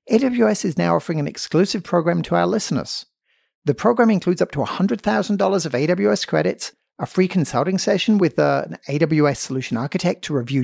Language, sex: English, male